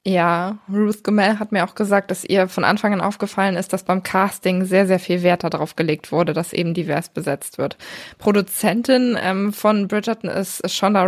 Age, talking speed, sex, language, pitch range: 20-39, 185 wpm, female, German, 185-215 Hz